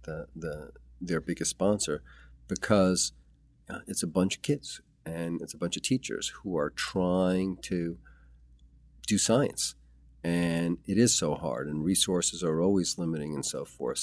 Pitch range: 75-90 Hz